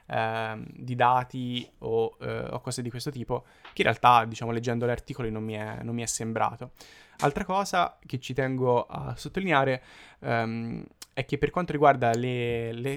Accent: native